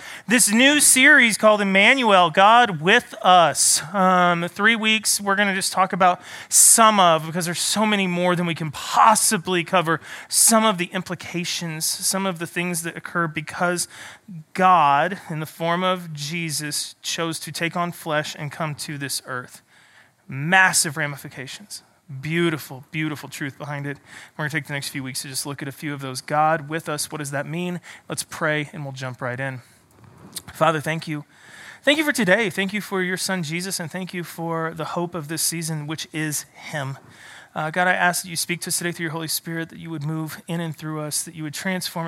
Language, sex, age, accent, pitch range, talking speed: English, male, 30-49, American, 150-180 Hz, 205 wpm